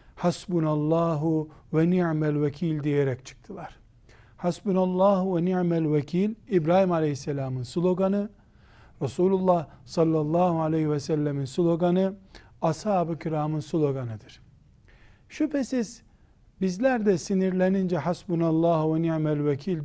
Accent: native